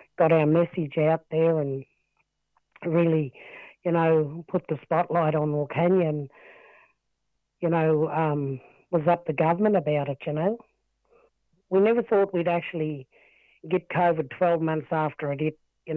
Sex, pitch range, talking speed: female, 150-175 Hz, 145 wpm